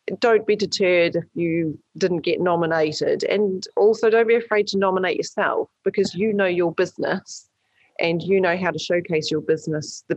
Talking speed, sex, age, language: 175 wpm, female, 30-49, English